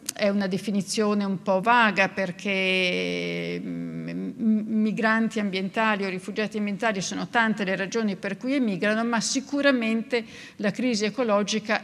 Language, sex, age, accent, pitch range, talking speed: Italian, female, 50-69, native, 195-225 Hz, 120 wpm